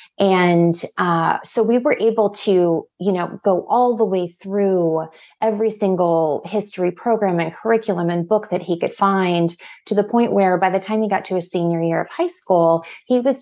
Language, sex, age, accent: English, female, 30-49, American